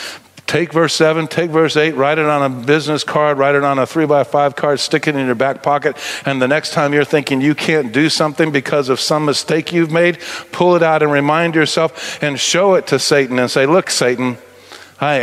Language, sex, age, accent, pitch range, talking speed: English, male, 50-69, American, 125-155 Hz, 230 wpm